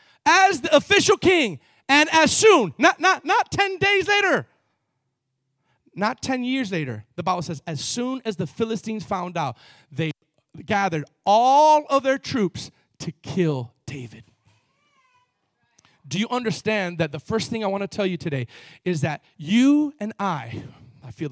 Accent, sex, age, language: American, male, 30-49, English